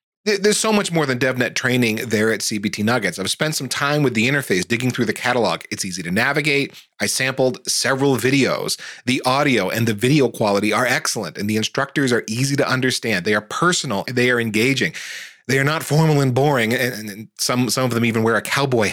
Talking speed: 210 wpm